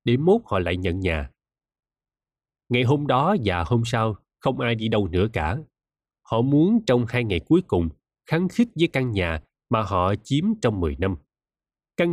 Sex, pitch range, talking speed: male, 100-135 Hz, 185 wpm